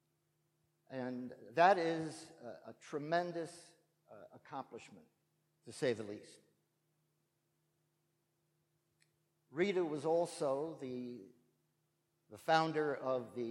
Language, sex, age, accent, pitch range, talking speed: English, male, 50-69, American, 130-165 Hz, 90 wpm